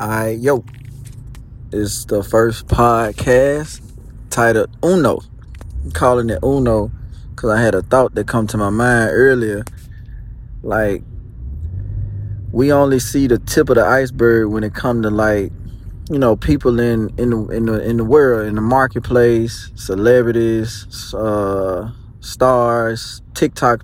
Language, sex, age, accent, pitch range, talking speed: English, male, 20-39, American, 105-125 Hz, 130 wpm